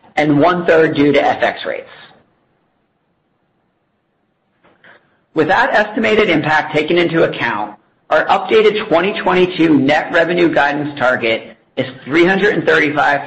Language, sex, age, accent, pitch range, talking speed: English, male, 50-69, American, 140-180 Hz, 100 wpm